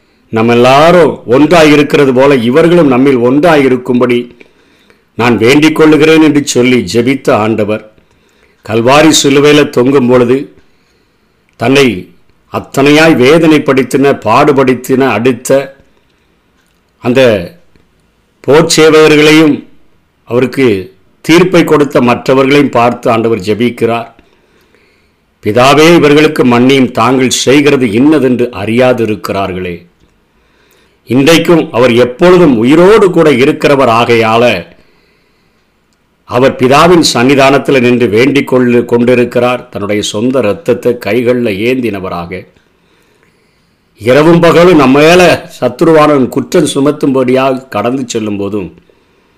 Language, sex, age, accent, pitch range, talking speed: Tamil, male, 50-69, native, 120-145 Hz, 85 wpm